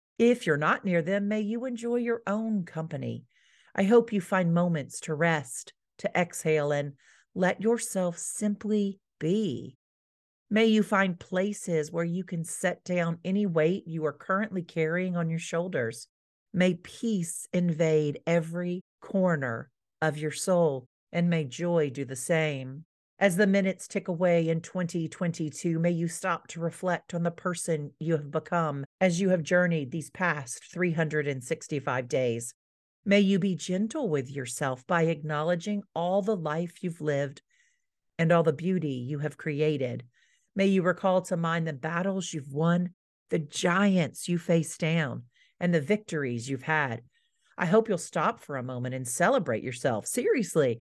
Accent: American